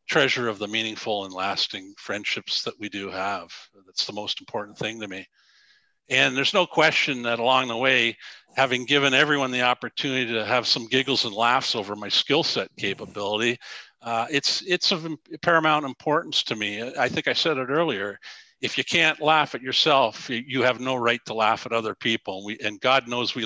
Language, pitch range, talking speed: English, 110-140 Hz, 190 wpm